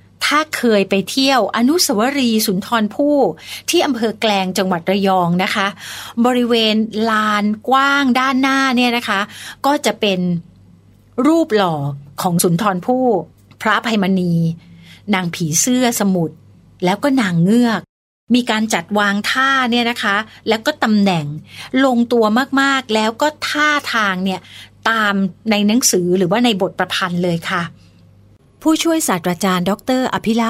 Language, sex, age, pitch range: Thai, female, 30-49, 175-235 Hz